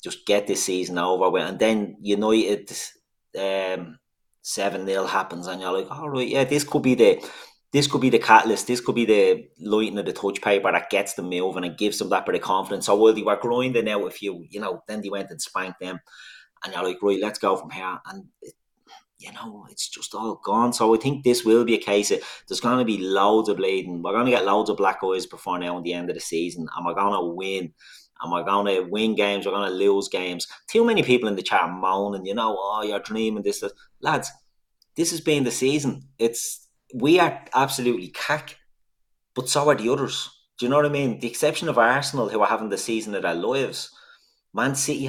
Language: English